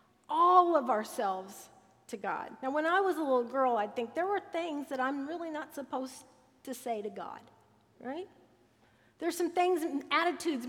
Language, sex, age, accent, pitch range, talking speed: English, female, 50-69, American, 245-320 Hz, 180 wpm